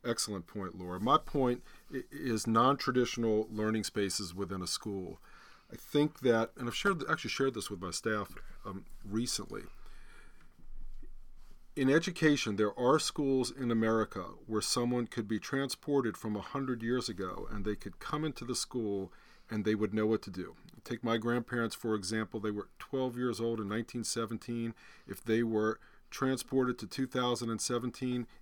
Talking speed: 160 wpm